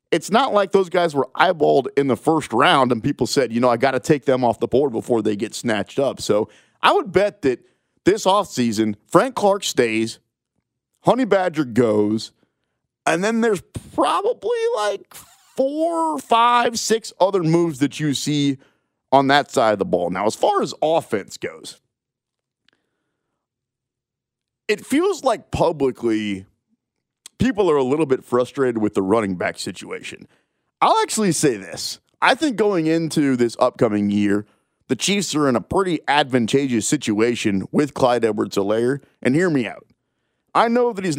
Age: 40-59